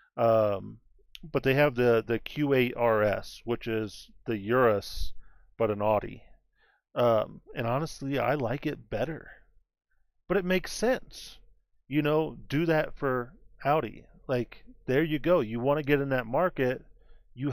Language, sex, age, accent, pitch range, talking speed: English, male, 40-59, American, 115-140 Hz, 150 wpm